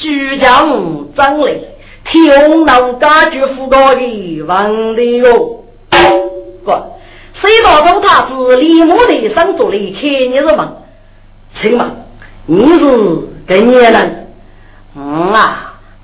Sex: female